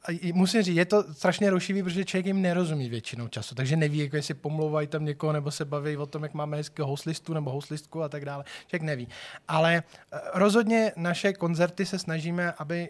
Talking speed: 190 wpm